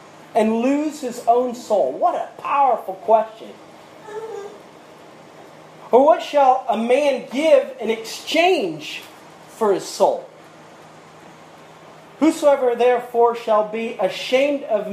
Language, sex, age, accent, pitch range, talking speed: English, male, 30-49, American, 200-260 Hz, 105 wpm